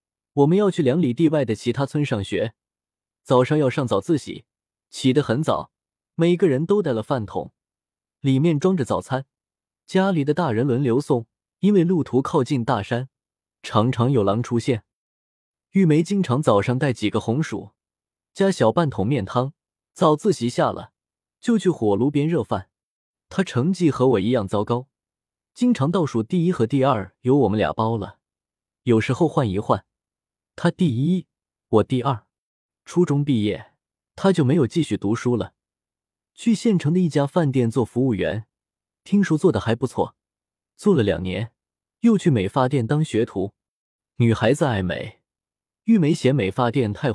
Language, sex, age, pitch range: Chinese, male, 20-39, 110-160 Hz